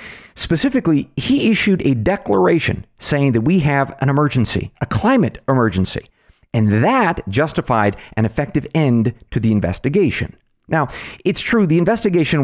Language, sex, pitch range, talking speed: English, male, 110-155 Hz, 135 wpm